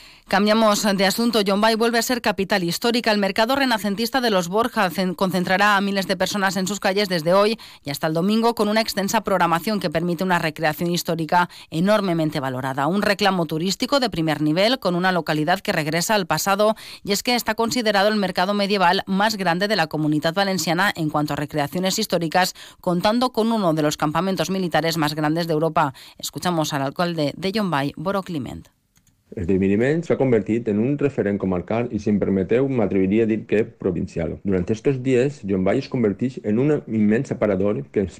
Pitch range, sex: 120-195 Hz, female